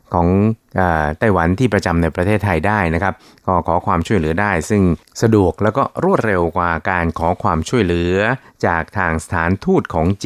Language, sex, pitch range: Thai, male, 85-110 Hz